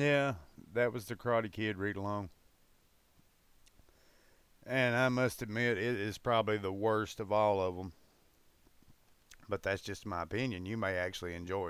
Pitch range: 100-130 Hz